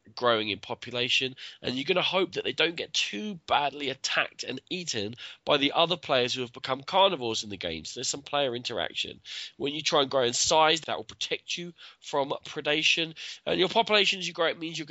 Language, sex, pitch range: English, male, 115-165 Hz